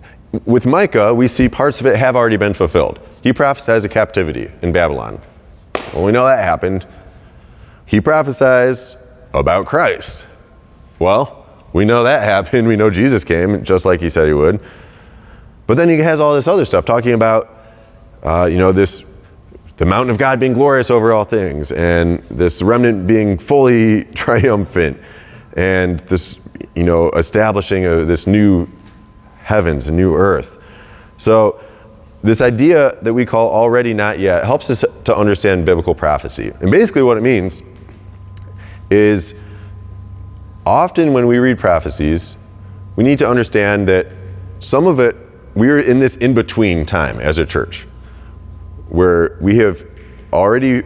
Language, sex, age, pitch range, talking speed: English, male, 30-49, 90-115 Hz, 150 wpm